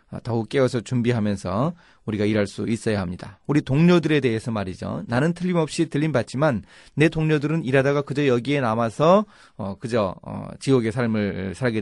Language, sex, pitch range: Korean, male, 105-145 Hz